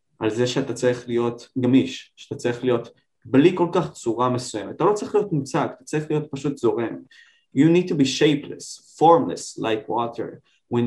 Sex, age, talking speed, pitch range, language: male, 20-39, 180 wpm, 115-145 Hz, Hebrew